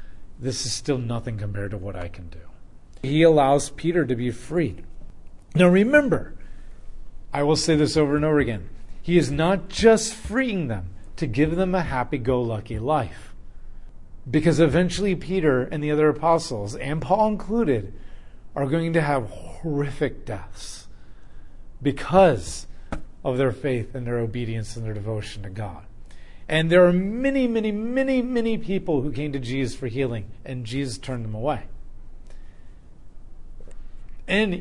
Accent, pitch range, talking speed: American, 105-155 Hz, 150 wpm